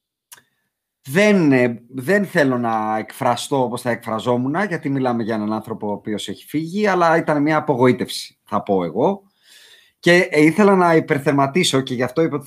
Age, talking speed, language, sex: 30-49, 165 wpm, Greek, male